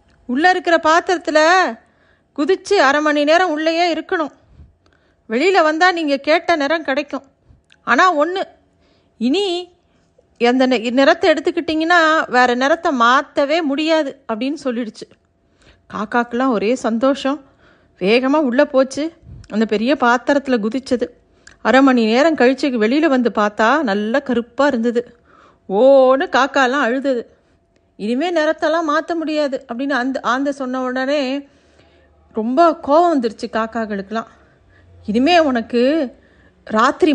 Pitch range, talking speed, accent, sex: 235-305 Hz, 105 wpm, native, female